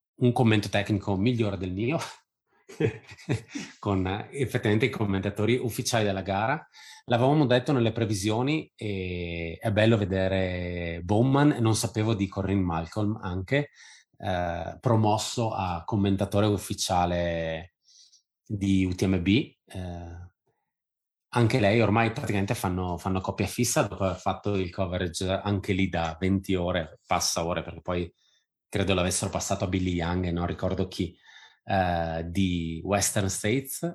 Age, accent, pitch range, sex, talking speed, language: 30-49, native, 90-110 Hz, male, 125 wpm, Italian